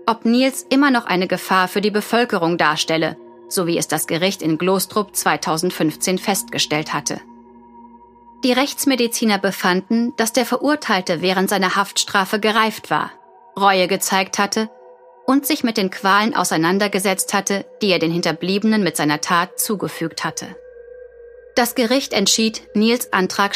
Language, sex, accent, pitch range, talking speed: German, female, German, 175-235 Hz, 140 wpm